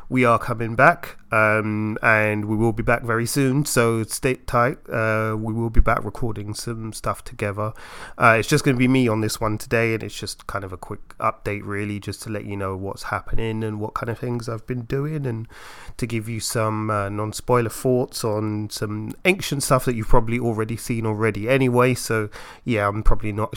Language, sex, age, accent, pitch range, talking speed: English, male, 30-49, British, 105-130 Hz, 210 wpm